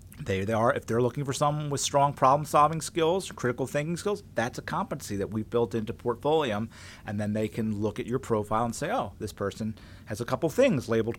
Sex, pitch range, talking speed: male, 105-145 Hz, 220 wpm